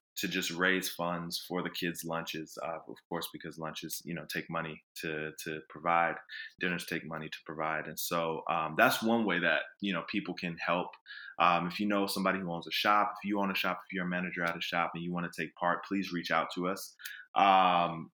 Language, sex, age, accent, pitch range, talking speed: English, male, 20-39, American, 85-100 Hz, 230 wpm